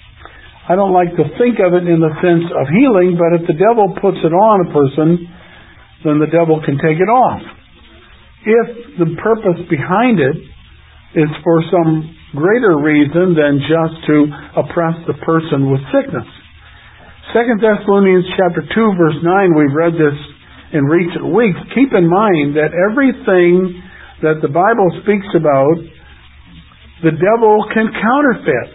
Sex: male